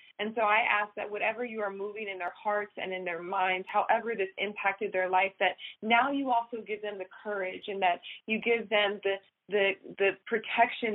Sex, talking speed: female, 210 wpm